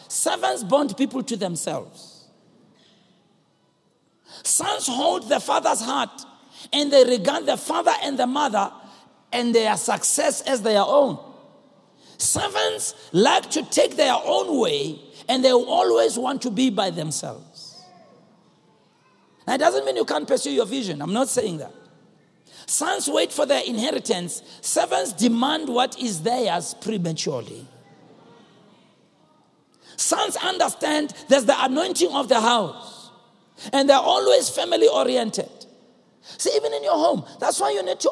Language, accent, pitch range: English, South African, 205-285 Hz